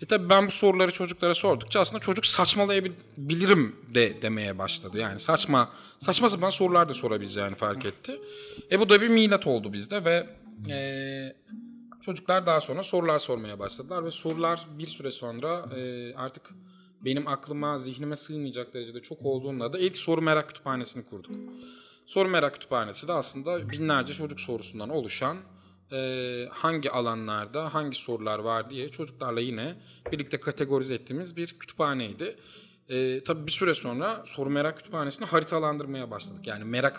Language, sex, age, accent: Turkish, male, 30-49, native